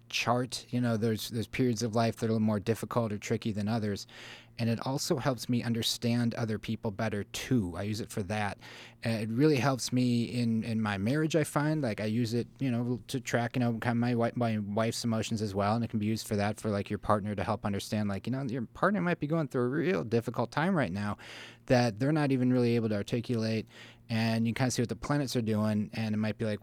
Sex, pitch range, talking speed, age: male, 105-120 Hz, 260 wpm, 30-49